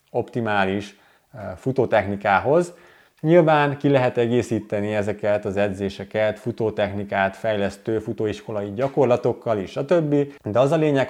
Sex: male